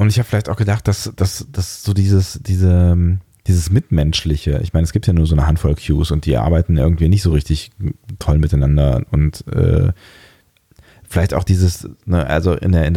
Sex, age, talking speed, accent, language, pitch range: male, 30-49, 180 wpm, German, German, 80-100 Hz